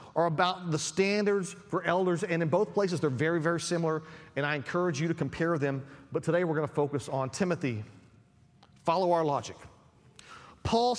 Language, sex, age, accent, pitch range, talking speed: English, male, 40-59, American, 145-190 Hz, 180 wpm